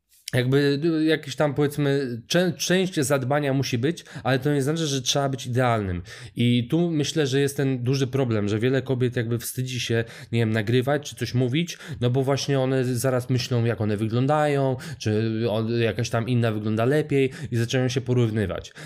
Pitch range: 120-145 Hz